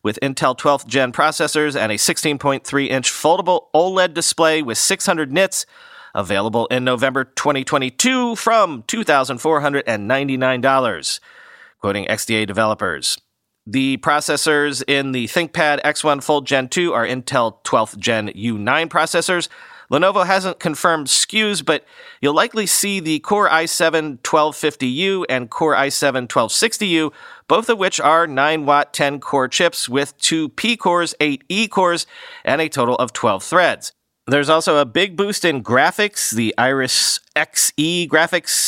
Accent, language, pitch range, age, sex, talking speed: American, English, 135-180 Hz, 40-59, male, 130 wpm